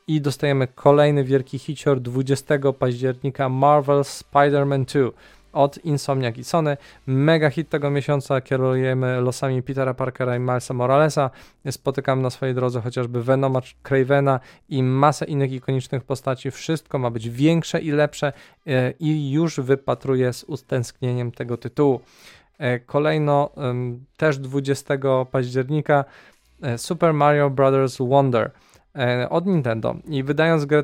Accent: native